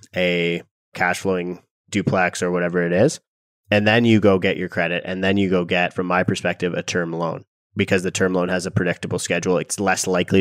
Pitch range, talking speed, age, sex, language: 90-100 Hz, 215 wpm, 20-39, male, English